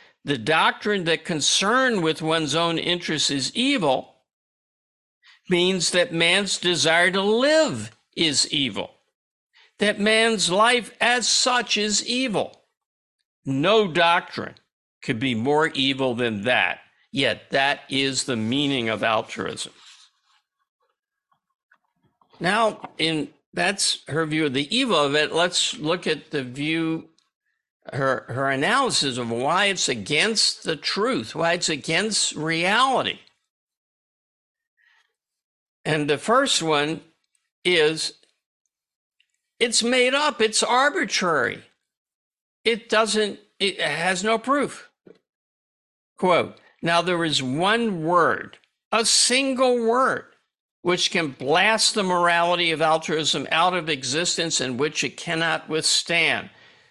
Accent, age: American, 60-79